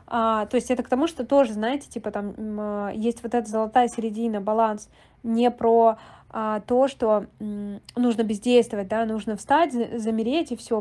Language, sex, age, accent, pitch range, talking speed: Russian, female, 20-39, native, 220-250 Hz, 180 wpm